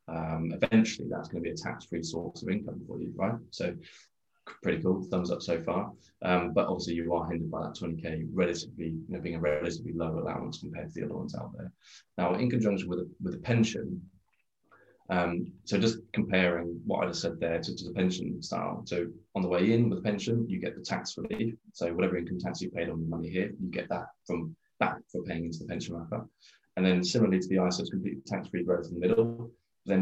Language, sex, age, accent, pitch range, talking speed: English, male, 20-39, British, 85-95 Hz, 230 wpm